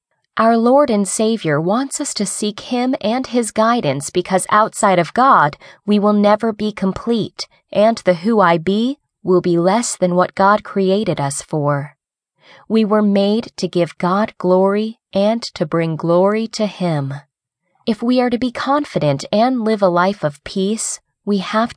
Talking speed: 170 wpm